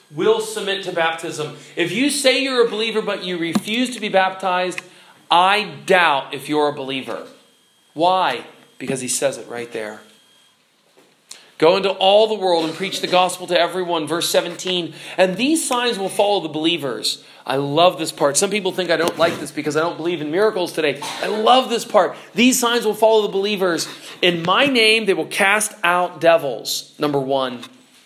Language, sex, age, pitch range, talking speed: English, male, 40-59, 150-220 Hz, 185 wpm